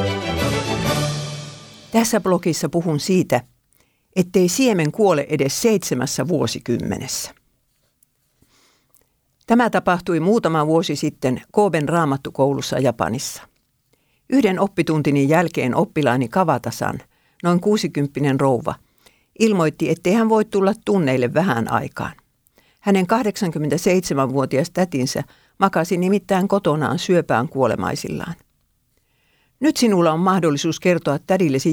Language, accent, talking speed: Finnish, native, 90 wpm